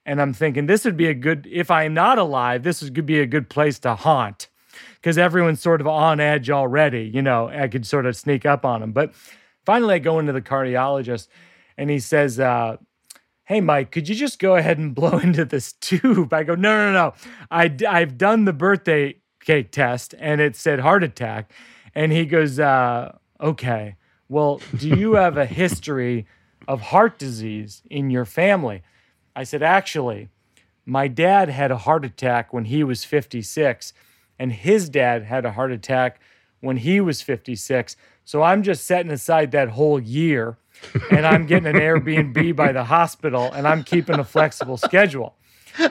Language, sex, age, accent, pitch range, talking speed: English, male, 30-49, American, 130-170 Hz, 185 wpm